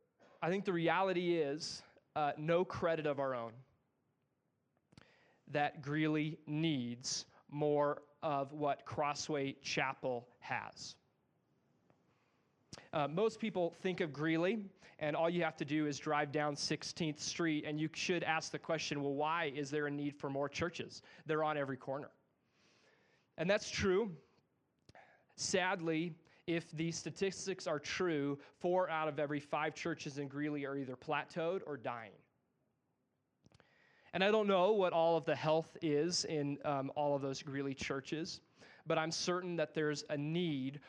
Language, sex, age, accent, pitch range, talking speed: English, male, 20-39, American, 145-170 Hz, 150 wpm